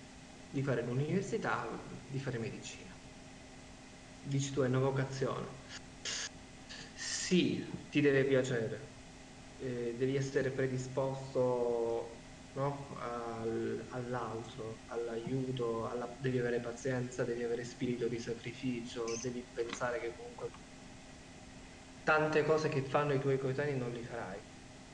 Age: 20-39